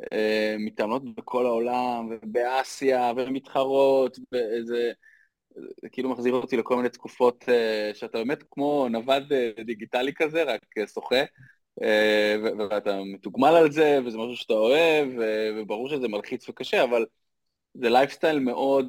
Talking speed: 135 wpm